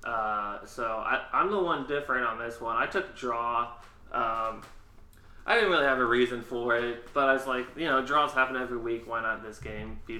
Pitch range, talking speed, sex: 105-130 Hz, 220 wpm, male